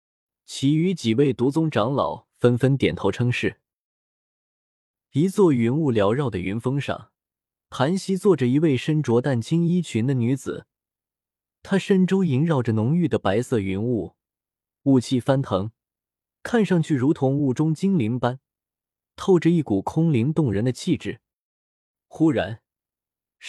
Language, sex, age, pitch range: Chinese, male, 20-39, 115-170 Hz